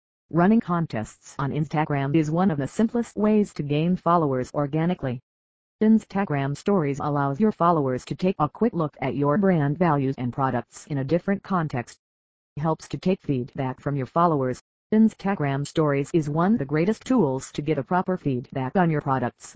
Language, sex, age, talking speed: English, female, 40-59, 180 wpm